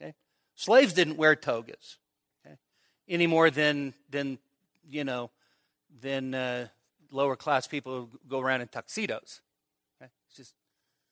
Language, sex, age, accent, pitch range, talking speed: English, male, 50-69, American, 135-160 Hz, 130 wpm